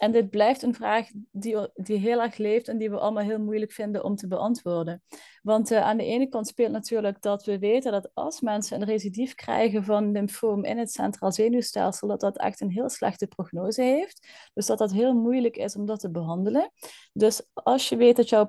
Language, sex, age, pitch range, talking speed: Dutch, female, 20-39, 205-240 Hz, 215 wpm